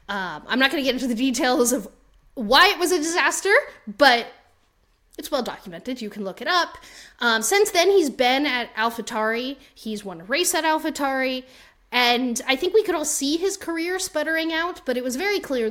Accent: American